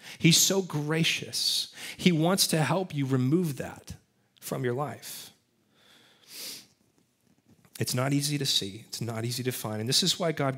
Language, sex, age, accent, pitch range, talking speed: English, male, 30-49, American, 125-155 Hz, 160 wpm